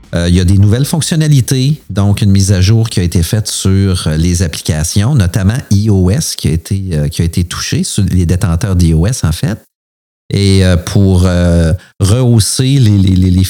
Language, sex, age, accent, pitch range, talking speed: French, male, 40-59, Canadian, 90-110 Hz, 175 wpm